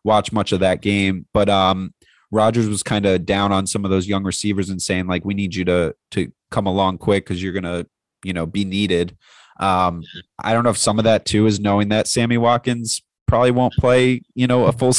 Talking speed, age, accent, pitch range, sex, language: 230 wpm, 30-49, American, 95-110 Hz, male, English